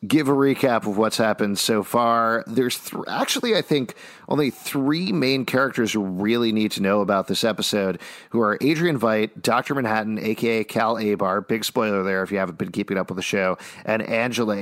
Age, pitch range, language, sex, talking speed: 40-59, 105-130 Hz, English, male, 195 wpm